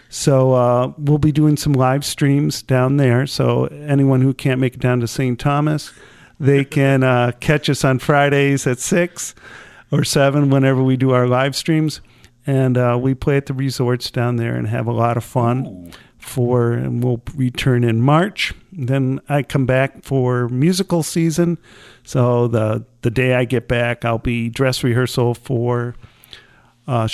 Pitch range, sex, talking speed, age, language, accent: 125-150 Hz, male, 175 wpm, 50-69, English, American